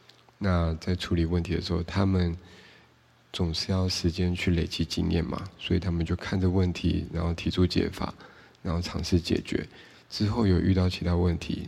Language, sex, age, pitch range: Chinese, male, 20-39, 85-95 Hz